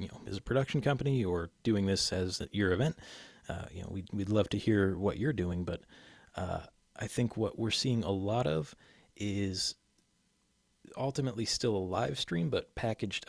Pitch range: 95-110 Hz